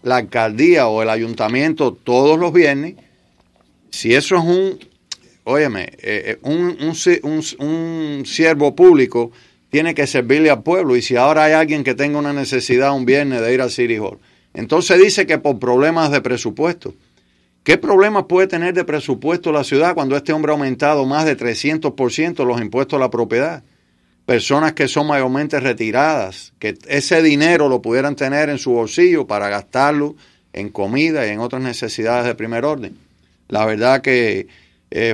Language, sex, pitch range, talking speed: English, male, 115-150 Hz, 165 wpm